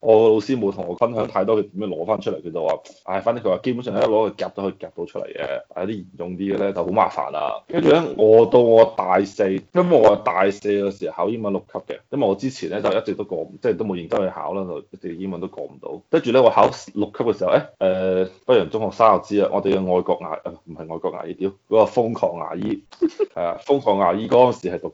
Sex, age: male, 20-39